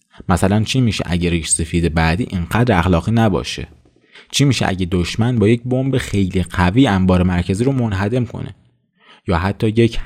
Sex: male